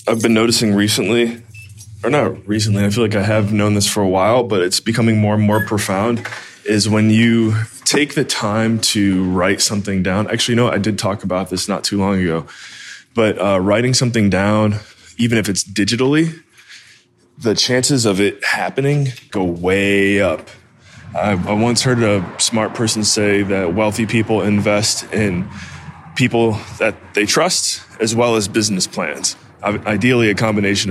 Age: 20-39